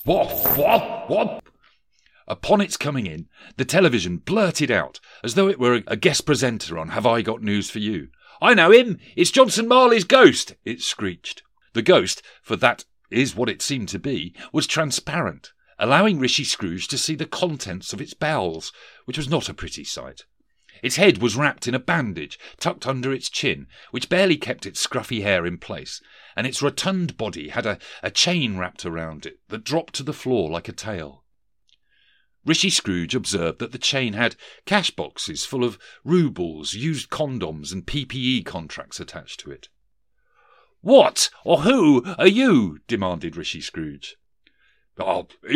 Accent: British